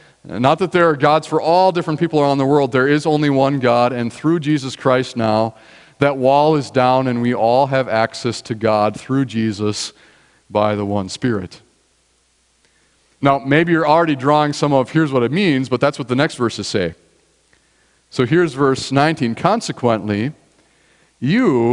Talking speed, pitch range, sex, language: 175 wpm, 120-160 Hz, male, English